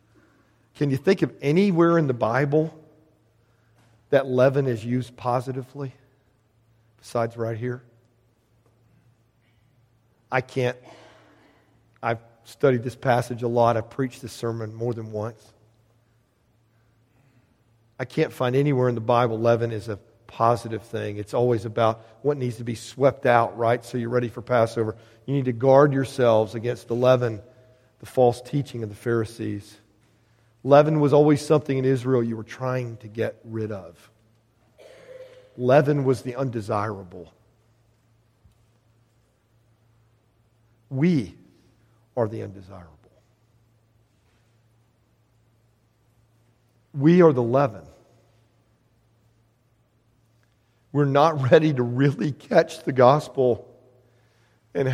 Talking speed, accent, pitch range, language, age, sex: 115 wpm, American, 115-130 Hz, English, 40-59, male